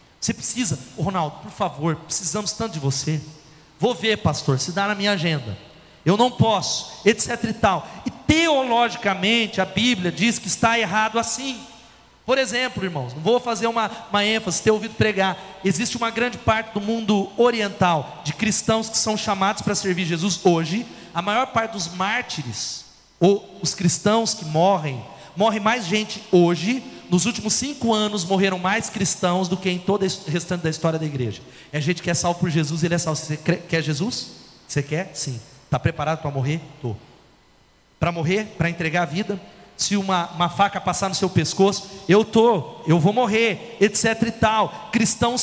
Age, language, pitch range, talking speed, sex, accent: 40-59, Portuguese, 170-220 Hz, 180 wpm, male, Brazilian